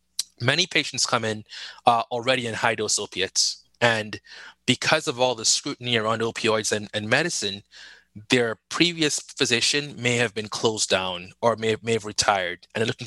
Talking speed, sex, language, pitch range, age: 170 wpm, male, English, 115-140 Hz, 20-39